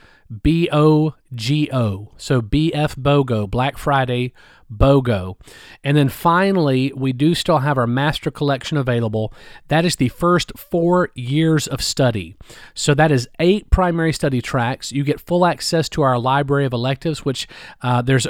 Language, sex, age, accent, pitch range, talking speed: English, male, 40-59, American, 125-155 Hz, 150 wpm